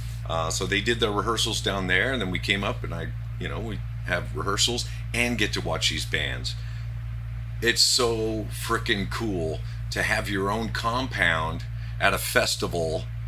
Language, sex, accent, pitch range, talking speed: English, male, American, 110-120 Hz, 170 wpm